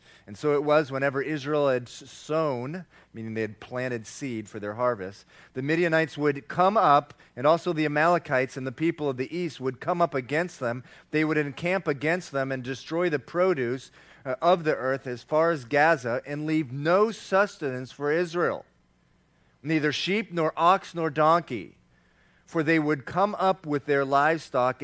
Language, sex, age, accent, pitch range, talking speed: English, male, 40-59, American, 125-165 Hz, 175 wpm